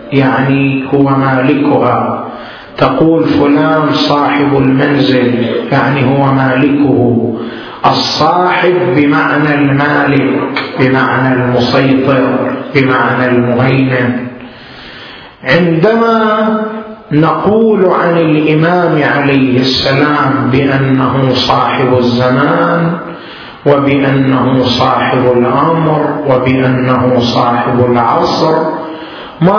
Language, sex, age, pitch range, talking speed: Arabic, male, 40-59, 130-170 Hz, 65 wpm